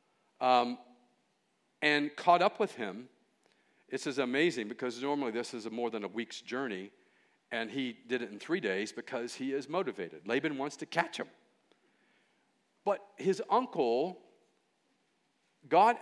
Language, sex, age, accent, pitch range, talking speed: English, male, 50-69, American, 150-215 Hz, 145 wpm